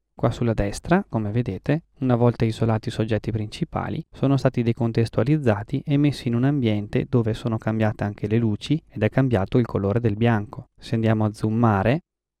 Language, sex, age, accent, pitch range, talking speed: Italian, male, 20-39, native, 105-125 Hz, 175 wpm